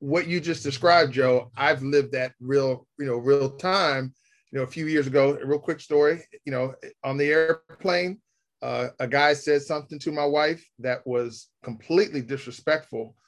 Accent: American